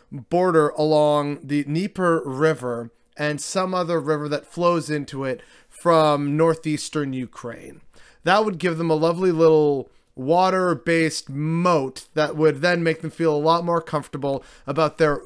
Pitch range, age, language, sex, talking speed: 140-165 Hz, 30-49, English, male, 145 wpm